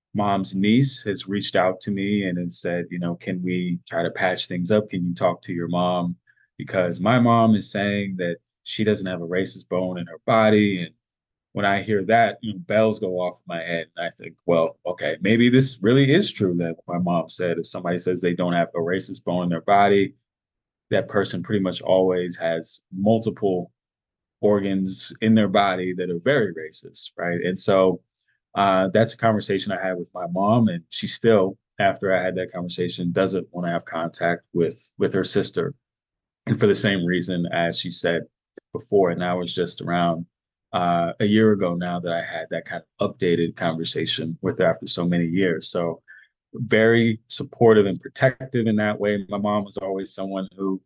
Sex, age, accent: male, 20-39, American